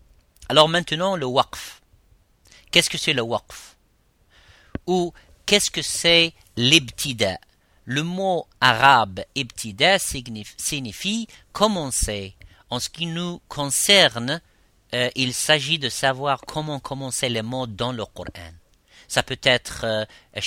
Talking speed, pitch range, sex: 120 wpm, 110-145 Hz, male